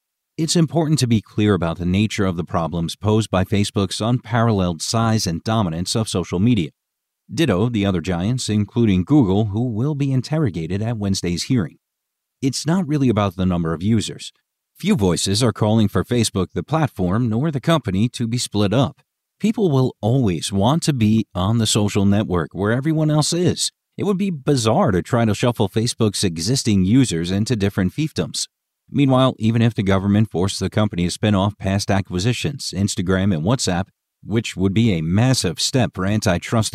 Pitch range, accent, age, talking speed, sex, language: 95-125 Hz, American, 40-59, 180 wpm, male, English